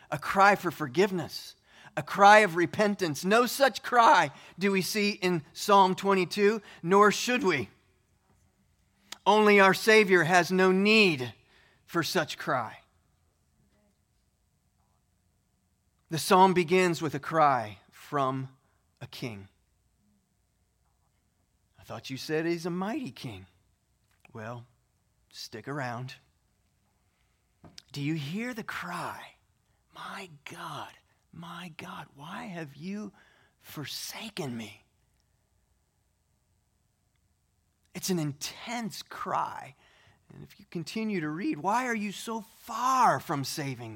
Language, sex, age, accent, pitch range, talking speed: English, male, 30-49, American, 115-195 Hz, 110 wpm